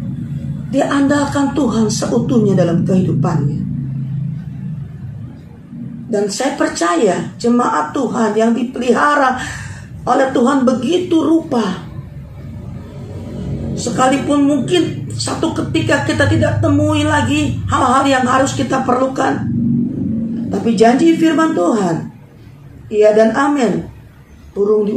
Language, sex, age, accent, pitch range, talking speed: English, female, 40-59, Indonesian, 190-265 Hz, 95 wpm